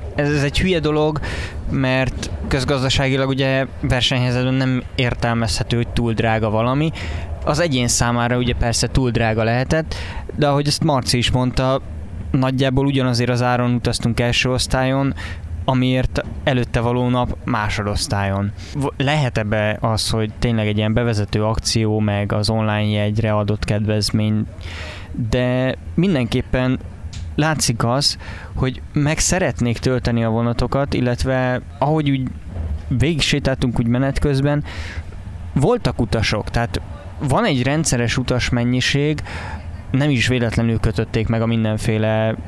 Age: 20-39